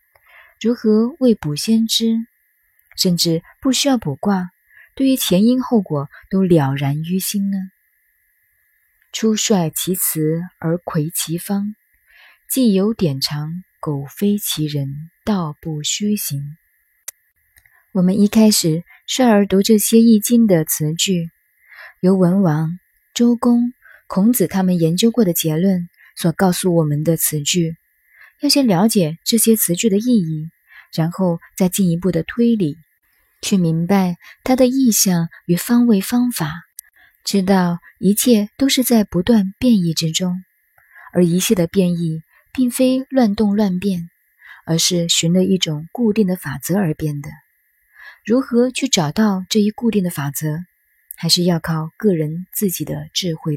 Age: 20-39